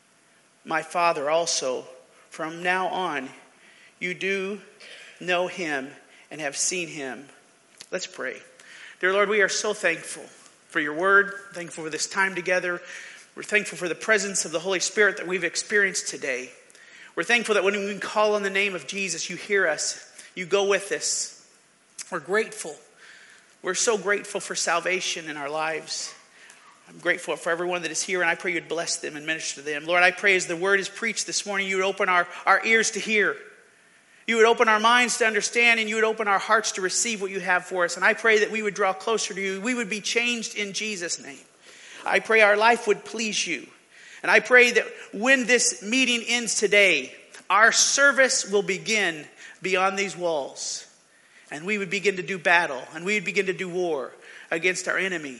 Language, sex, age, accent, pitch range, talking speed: English, male, 40-59, American, 180-220 Hz, 195 wpm